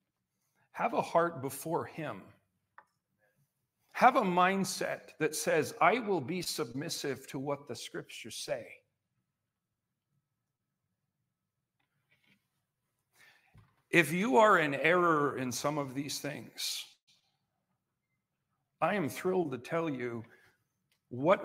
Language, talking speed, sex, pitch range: English, 100 wpm, male, 130-160 Hz